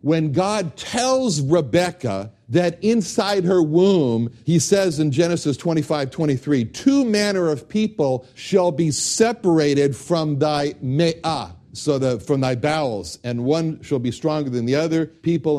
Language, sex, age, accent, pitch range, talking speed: English, male, 60-79, American, 115-160 Hz, 140 wpm